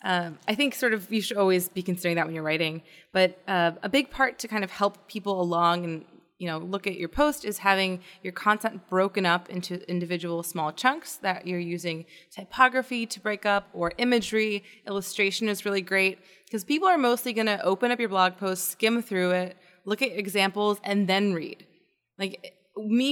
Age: 20-39